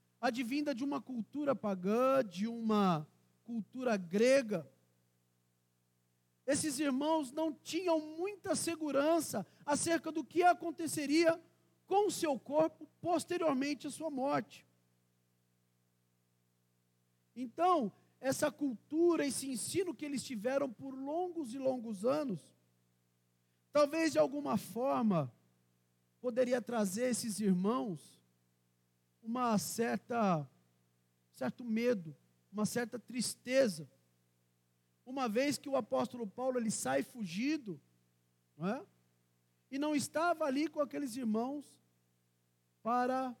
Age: 40-59